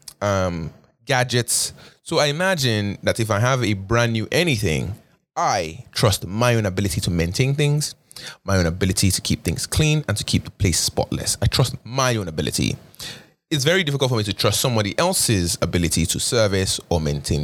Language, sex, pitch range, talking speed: English, male, 95-130 Hz, 180 wpm